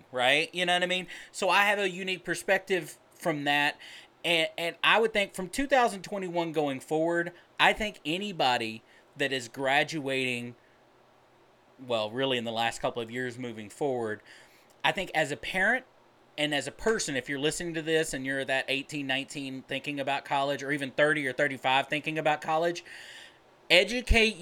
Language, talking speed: English, 170 wpm